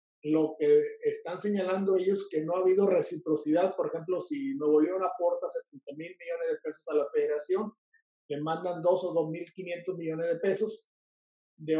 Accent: Mexican